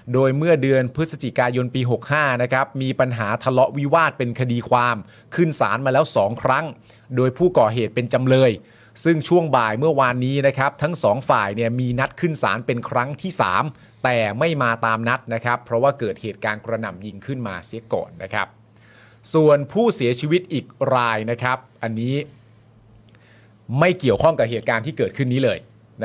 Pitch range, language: 110-135 Hz, Thai